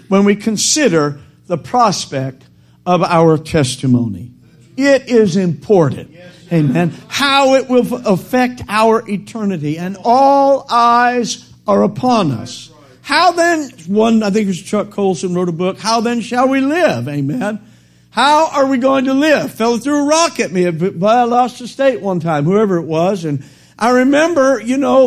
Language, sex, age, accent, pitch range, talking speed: English, male, 50-69, American, 180-265 Hz, 165 wpm